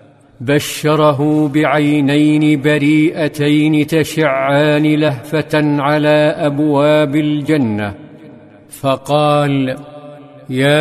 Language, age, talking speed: Arabic, 50-69, 55 wpm